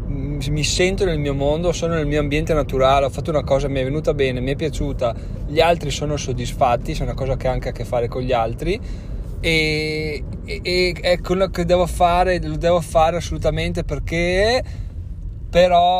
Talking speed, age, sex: 190 wpm, 20-39, male